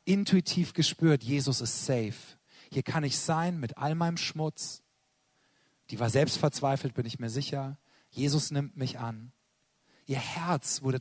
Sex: male